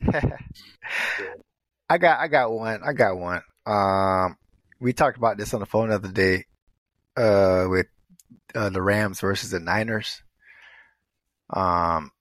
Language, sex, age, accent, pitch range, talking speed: English, male, 30-49, American, 95-120 Hz, 140 wpm